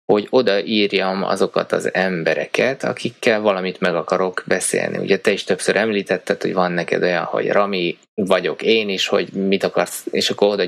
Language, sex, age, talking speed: Hungarian, male, 20-39, 170 wpm